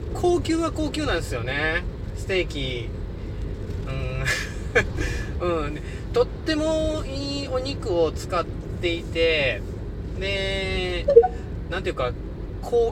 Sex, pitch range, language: male, 85-110 Hz, Japanese